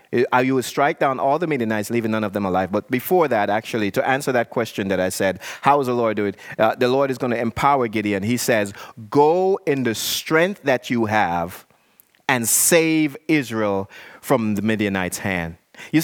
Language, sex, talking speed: English, male, 200 wpm